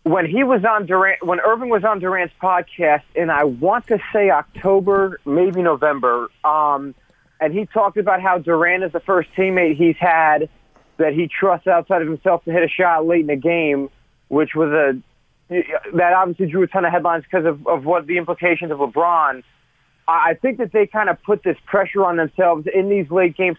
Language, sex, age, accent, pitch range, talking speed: English, male, 30-49, American, 165-195 Hz, 200 wpm